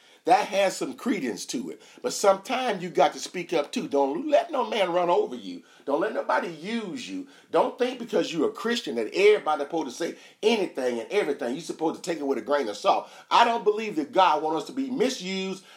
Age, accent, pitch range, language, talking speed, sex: 40-59, American, 155-245 Hz, English, 230 wpm, male